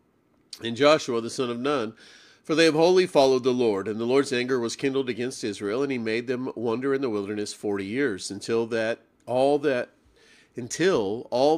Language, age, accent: English, 40-59, American